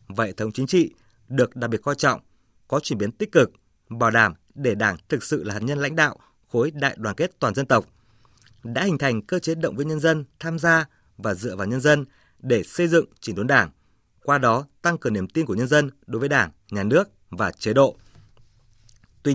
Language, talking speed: Vietnamese, 225 wpm